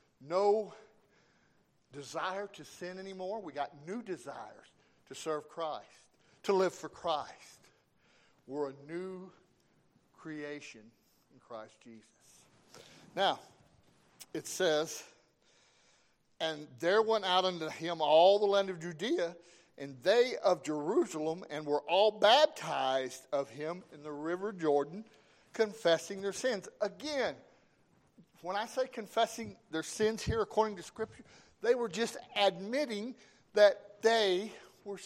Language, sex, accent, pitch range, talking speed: English, male, American, 155-215 Hz, 125 wpm